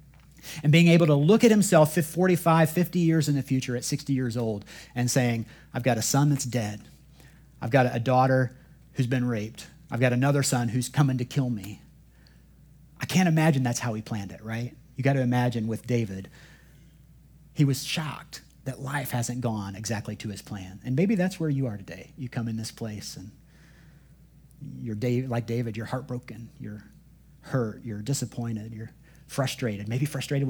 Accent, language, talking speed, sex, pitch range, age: American, English, 185 wpm, male, 120-150 Hz, 40-59